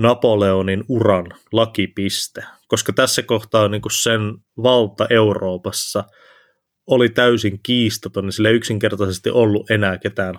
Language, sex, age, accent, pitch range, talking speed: Finnish, male, 20-39, native, 100-120 Hz, 105 wpm